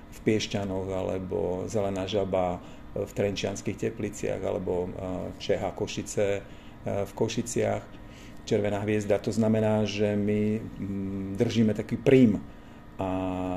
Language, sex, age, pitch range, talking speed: Slovak, male, 50-69, 95-110 Hz, 100 wpm